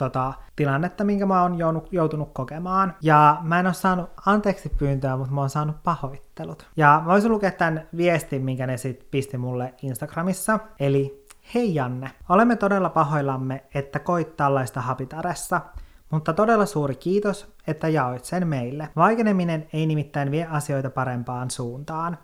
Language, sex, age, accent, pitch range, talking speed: Finnish, male, 30-49, native, 135-175 Hz, 145 wpm